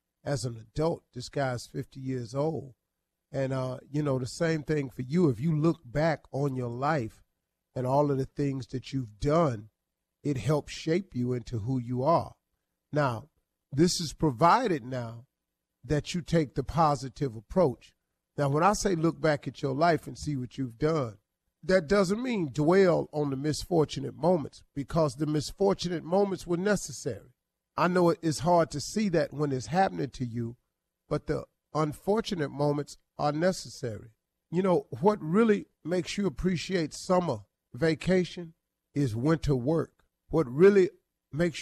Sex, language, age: male, English, 40-59